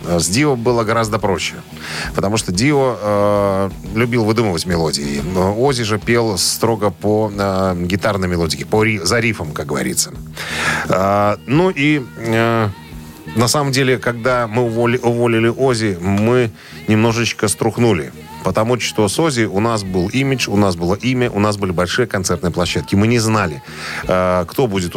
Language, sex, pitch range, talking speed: Russian, male, 95-120 Hz, 155 wpm